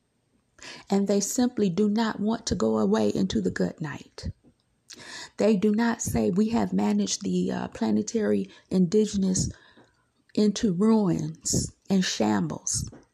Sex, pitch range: female, 185-225 Hz